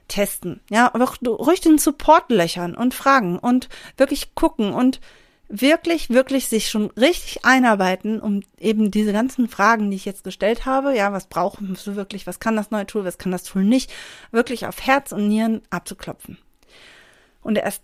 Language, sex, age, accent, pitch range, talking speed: German, female, 40-59, German, 200-250 Hz, 170 wpm